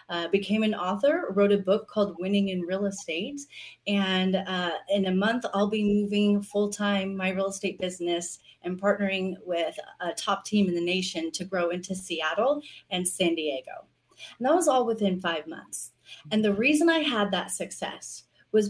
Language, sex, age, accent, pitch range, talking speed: English, female, 30-49, American, 185-220 Hz, 180 wpm